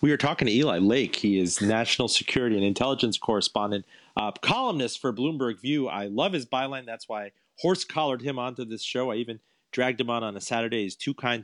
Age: 40-59